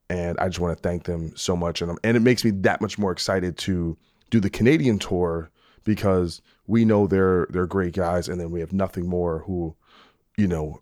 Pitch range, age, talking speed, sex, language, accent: 85-105 Hz, 20-39, 220 wpm, male, English, American